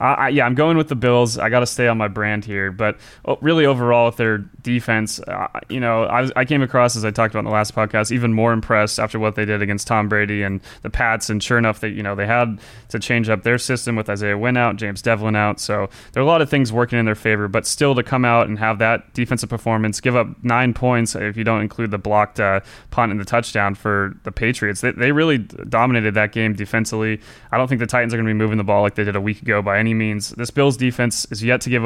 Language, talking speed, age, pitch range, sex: English, 270 wpm, 20-39, 105-120 Hz, male